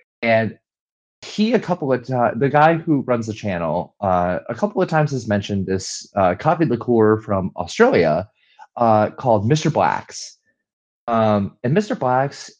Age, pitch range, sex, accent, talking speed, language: 30-49, 95-135 Hz, male, American, 155 wpm, English